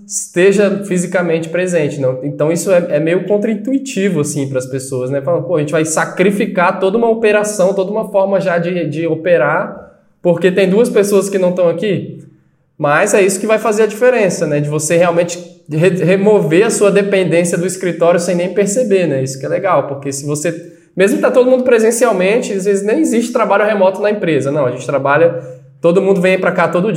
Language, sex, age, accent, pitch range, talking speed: Portuguese, male, 20-39, Brazilian, 155-205 Hz, 205 wpm